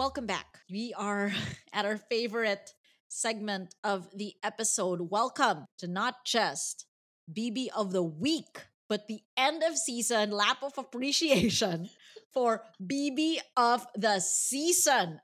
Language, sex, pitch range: English, female, 175-220 Hz